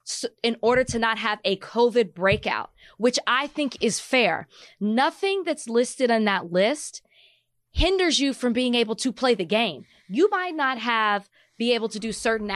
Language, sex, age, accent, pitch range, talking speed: English, female, 20-39, American, 205-275 Hz, 175 wpm